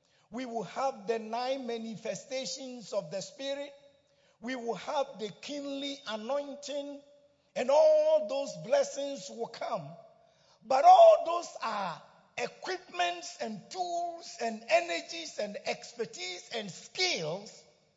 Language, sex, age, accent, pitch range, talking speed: English, male, 50-69, Nigerian, 205-310 Hz, 115 wpm